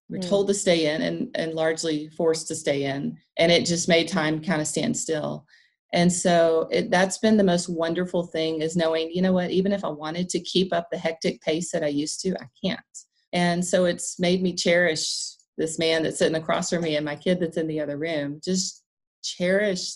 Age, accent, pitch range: 40-59, American, 160-185 Hz